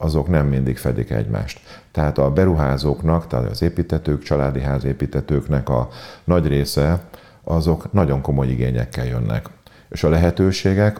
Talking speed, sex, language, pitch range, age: 130 wpm, male, Hungarian, 70-85 Hz, 50-69